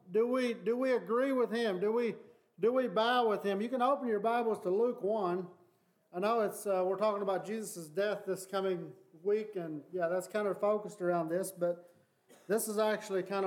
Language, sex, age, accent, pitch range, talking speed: English, male, 40-59, American, 185-225 Hz, 210 wpm